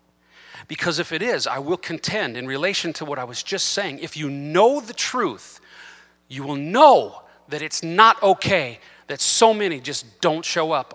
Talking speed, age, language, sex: 185 wpm, 40-59, English, male